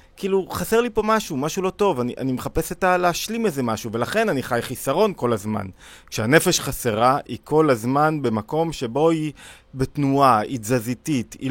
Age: 30-49